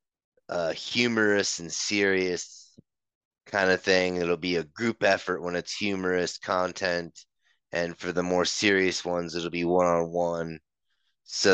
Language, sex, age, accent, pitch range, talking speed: English, male, 30-49, American, 85-95 Hz, 135 wpm